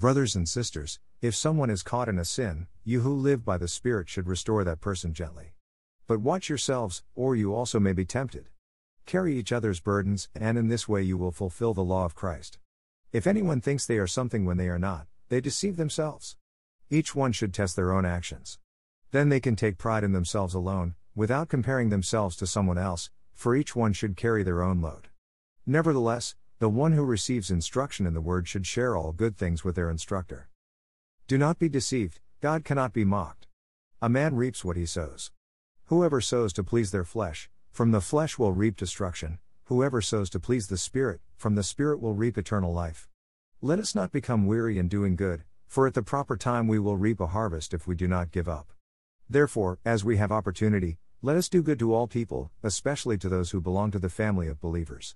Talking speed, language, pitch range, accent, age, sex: 205 wpm, English, 90-120 Hz, American, 50-69, male